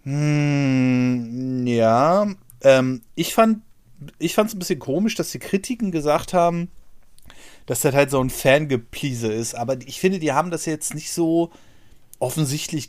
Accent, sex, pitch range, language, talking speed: German, male, 120-165 Hz, German, 150 wpm